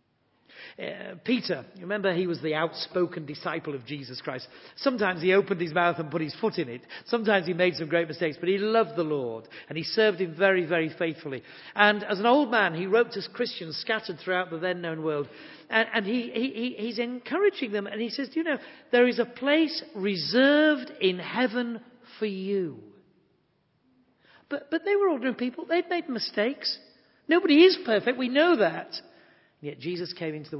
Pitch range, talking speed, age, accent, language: 155-230 Hz, 190 wpm, 40-59, British, English